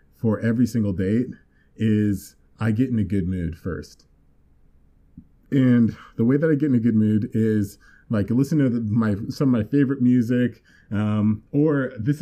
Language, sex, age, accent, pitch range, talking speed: English, male, 30-49, American, 100-125 Hz, 175 wpm